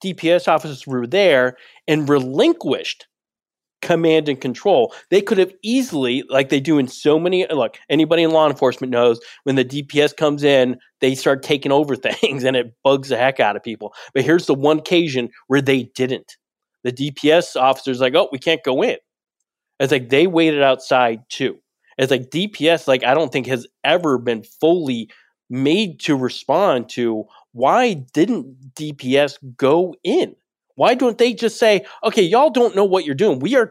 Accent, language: American, English